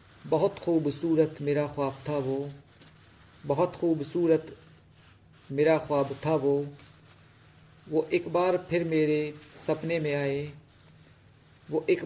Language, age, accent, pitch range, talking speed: Hindi, 50-69, native, 145-160 Hz, 110 wpm